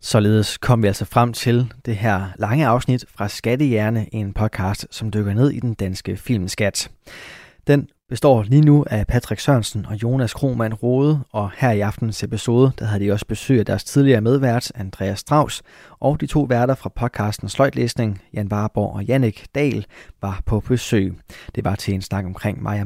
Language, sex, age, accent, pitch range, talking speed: Danish, male, 20-39, native, 105-130 Hz, 185 wpm